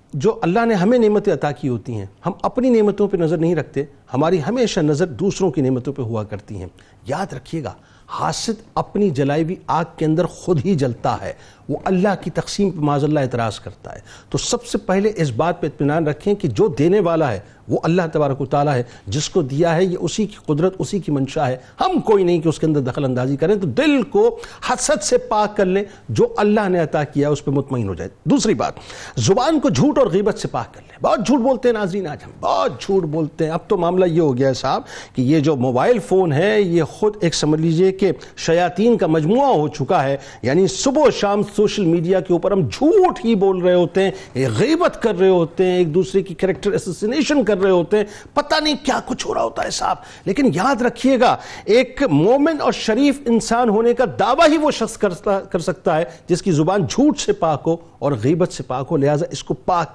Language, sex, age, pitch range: Urdu, male, 50-69, 150-220 Hz